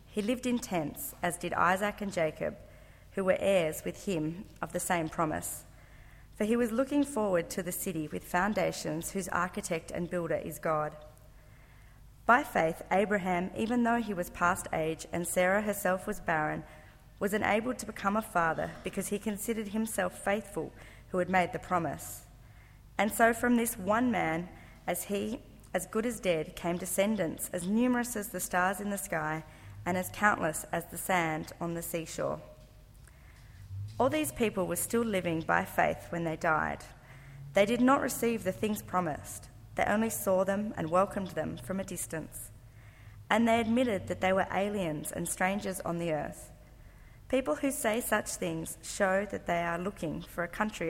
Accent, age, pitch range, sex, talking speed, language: Australian, 40-59, 160-210 Hz, female, 175 wpm, English